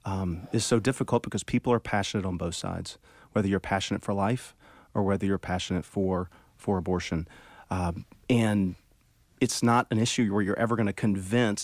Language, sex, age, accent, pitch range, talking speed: English, male, 40-59, American, 95-110 Hz, 180 wpm